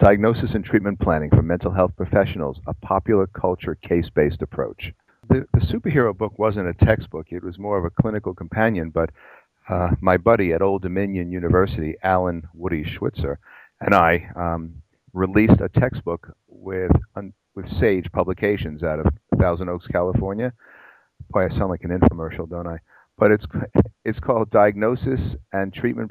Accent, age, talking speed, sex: American, 50-69, 160 wpm, male